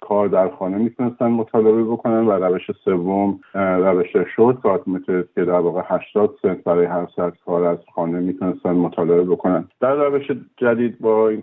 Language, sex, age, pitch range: Persian, male, 50-69, 90-115 Hz